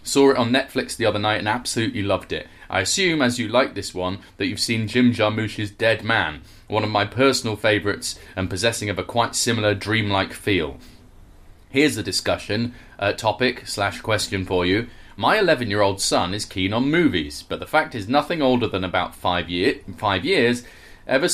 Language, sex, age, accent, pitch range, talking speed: English, male, 30-49, British, 100-130 Hz, 185 wpm